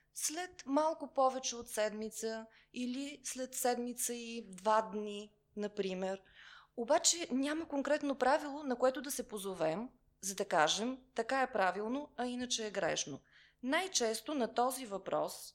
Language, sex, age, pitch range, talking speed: Bulgarian, female, 20-39, 200-265 Hz, 135 wpm